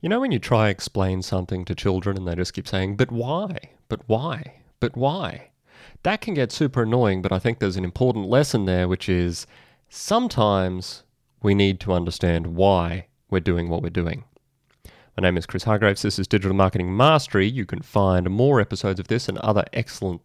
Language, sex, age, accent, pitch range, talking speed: English, male, 30-49, Australian, 90-115 Hz, 200 wpm